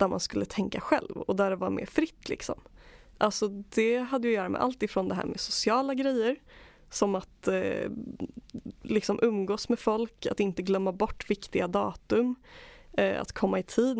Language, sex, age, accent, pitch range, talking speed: Swedish, female, 20-39, native, 195-250 Hz, 185 wpm